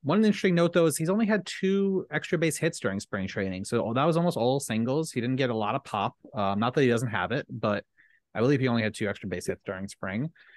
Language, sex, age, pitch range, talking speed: English, male, 30-49, 100-135 Hz, 265 wpm